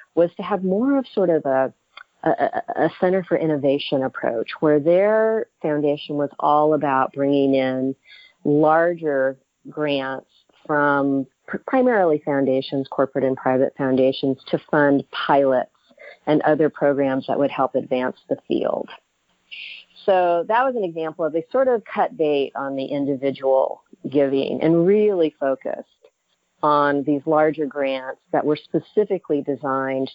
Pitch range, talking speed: 135-155 Hz, 140 wpm